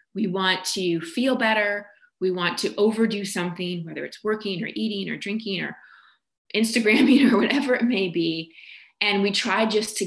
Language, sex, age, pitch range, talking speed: English, female, 20-39, 185-225 Hz, 175 wpm